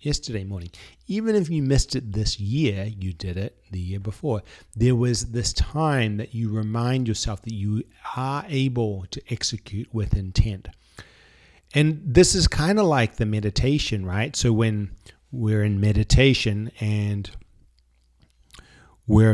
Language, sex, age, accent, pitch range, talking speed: English, male, 40-59, American, 105-125 Hz, 145 wpm